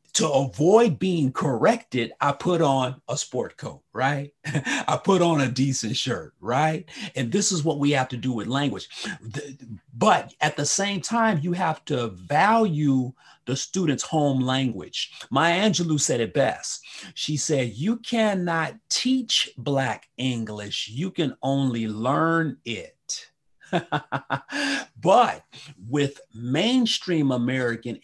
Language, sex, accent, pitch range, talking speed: English, male, American, 125-165 Hz, 135 wpm